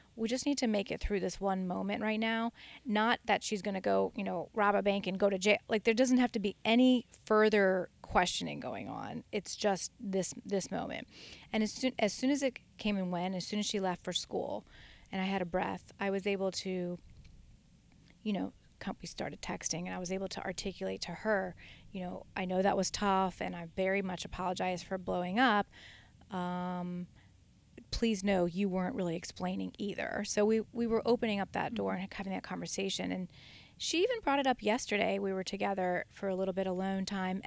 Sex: female